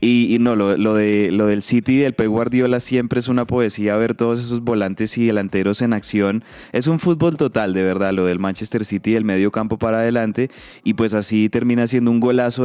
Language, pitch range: Spanish, 110-130 Hz